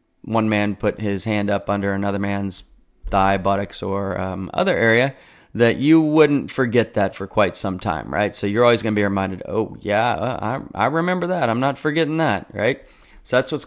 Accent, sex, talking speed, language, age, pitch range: American, male, 200 wpm, English, 30-49, 95-110 Hz